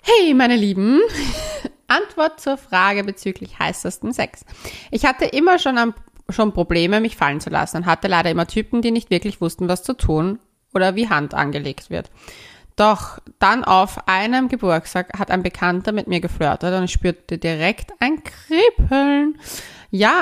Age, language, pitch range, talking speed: 20-39, German, 180-235 Hz, 165 wpm